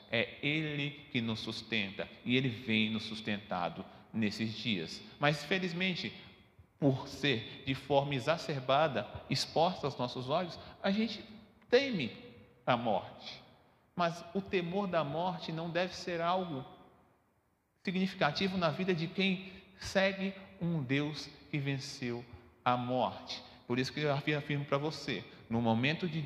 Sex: male